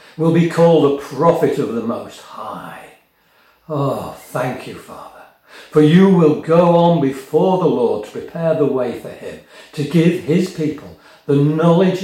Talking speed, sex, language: 165 wpm, male, English